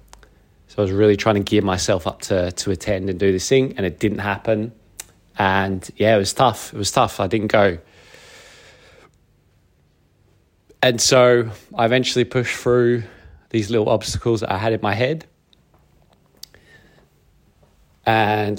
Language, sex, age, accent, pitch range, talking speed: English, male, 20-39, British, 95-115 Hz, 150 wpm